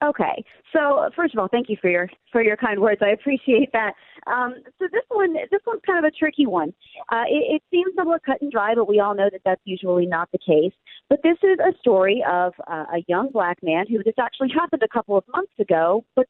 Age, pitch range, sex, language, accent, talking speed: 40-59, 185-285 Hz, female, English, American, 245 wpm